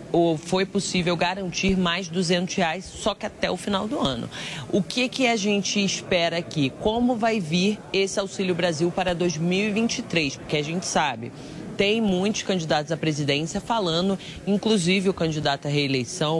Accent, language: Brazilian, Portuguese